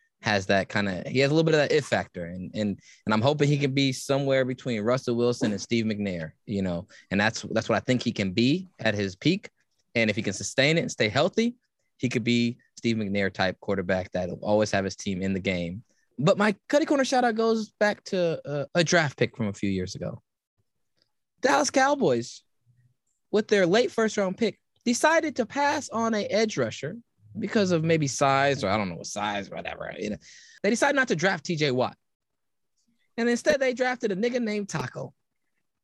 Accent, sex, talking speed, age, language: American, male, 210 wpm, 20-39, English